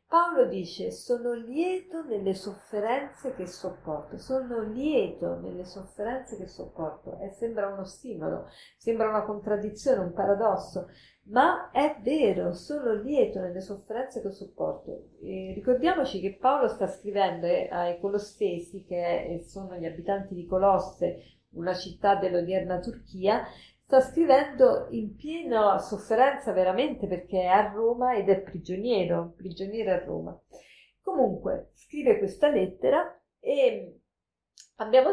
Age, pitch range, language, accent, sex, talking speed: 40-59, 185-260 Hz, Italian, native, female, 125 wpm